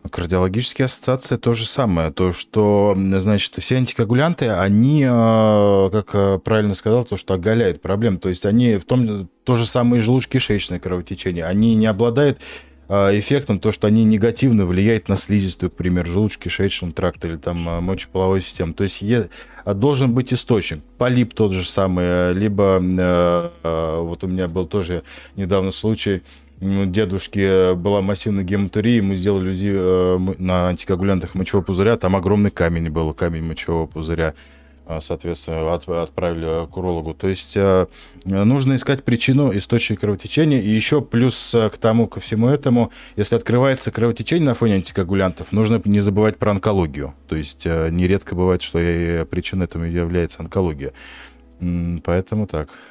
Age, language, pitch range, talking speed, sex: 20-39, Russian, 90-110 Hz, 145 wpm, male